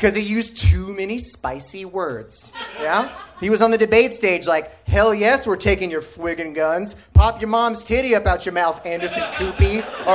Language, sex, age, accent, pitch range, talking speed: English, male, 30-49, American, 175-230 Hz, 195 wpm